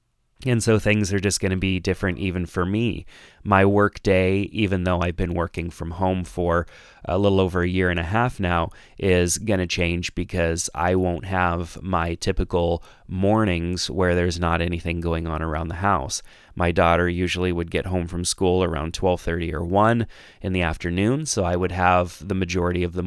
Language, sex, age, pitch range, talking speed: English, male, 30-49, 85-95 Hz, 195 wpm